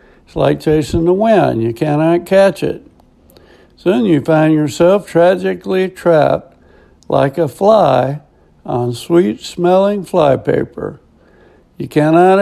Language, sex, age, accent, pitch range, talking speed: English, male, 60-79, American, 140-180 Hz, 105 wpm